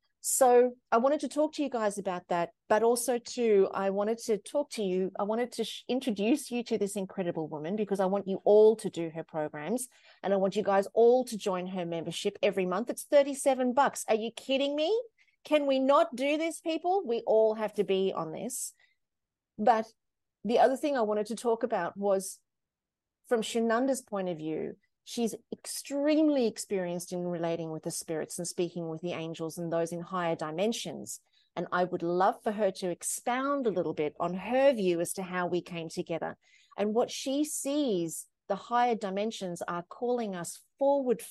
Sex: female